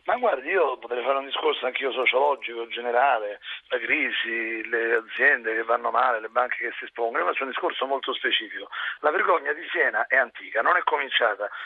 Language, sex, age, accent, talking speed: Italian, male, 40-59, native, 195 wpm